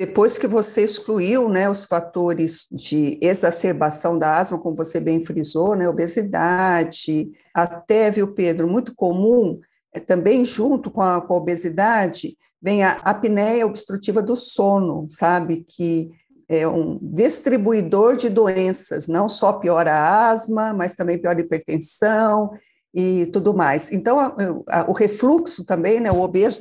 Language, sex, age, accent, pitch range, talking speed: Portuguese, female, 50-69, Brazilian, 175-230 Hz, 140 wpm